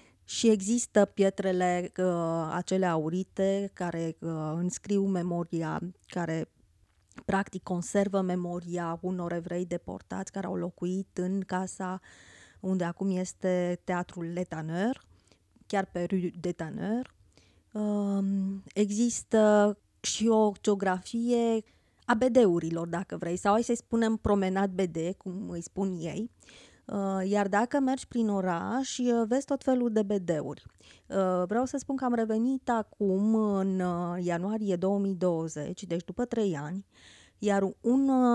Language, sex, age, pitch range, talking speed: Romanian, female, 20-39, 175-210 Hz, 120 wpm